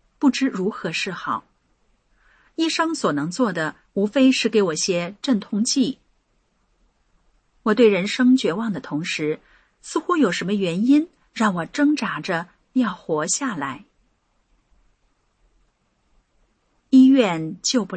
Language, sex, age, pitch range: Chinese, female, 40-59, 175-265 Hz